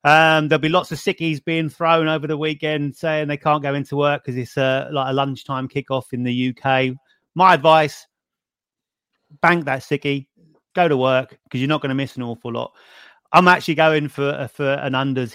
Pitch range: 130-155 Hz